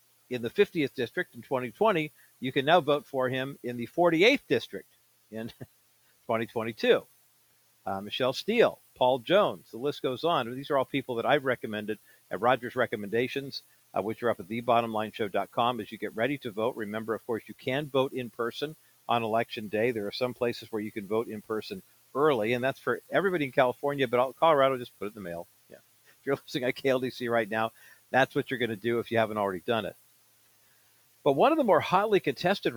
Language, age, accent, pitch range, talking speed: English, 50-69, American, 110-135 Hz, 205 wpm